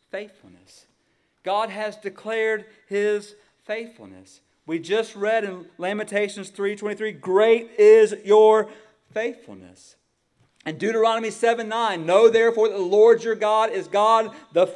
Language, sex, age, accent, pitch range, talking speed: English, male, 40-59, American, 195-230 Hz, 130 wpm